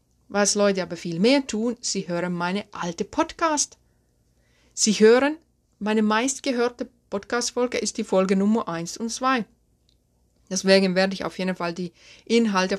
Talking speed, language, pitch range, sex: 150 wpm, German, 170-220 Hz, female